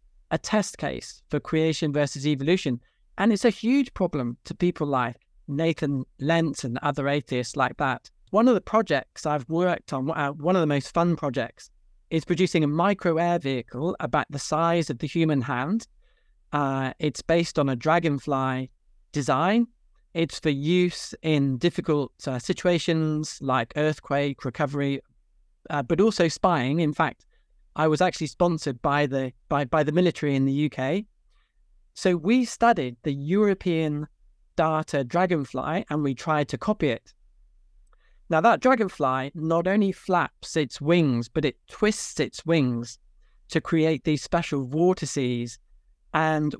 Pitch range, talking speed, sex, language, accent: 140-175 Hz, 150 wpm, male, English, British